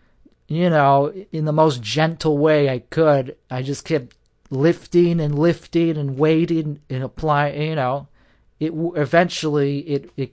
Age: 40-59